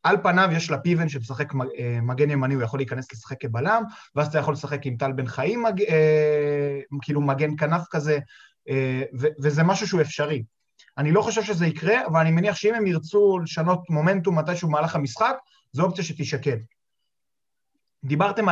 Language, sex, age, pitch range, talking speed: Hebrew, male, 30-49, 145-190 Hz, 160 wpm